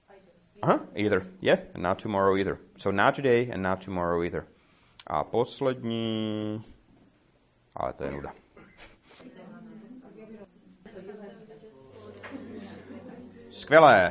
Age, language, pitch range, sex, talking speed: 30-49, Czech, 95-145 Hz, male, 90 wpm